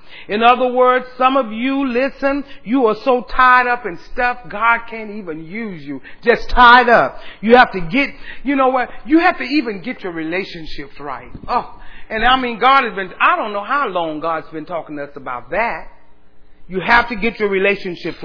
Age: 40-59